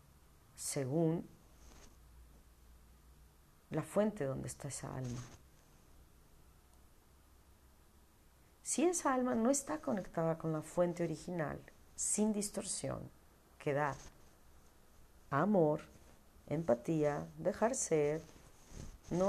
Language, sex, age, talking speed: Spanish, female, 40-59, 80 wpm